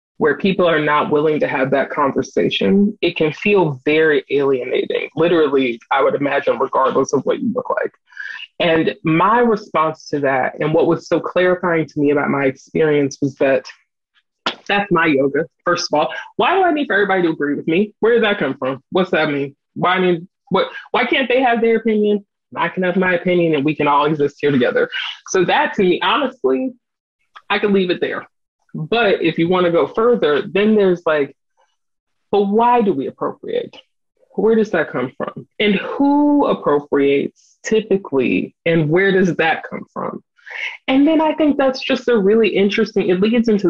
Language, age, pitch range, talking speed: English, 20-39, 155-225 Hz, 185 wpm